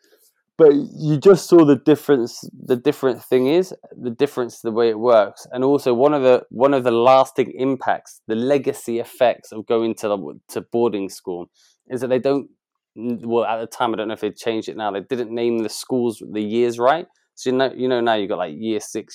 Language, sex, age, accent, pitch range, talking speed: English, male, 20-39, British, 115-140 Hz, 225 wpm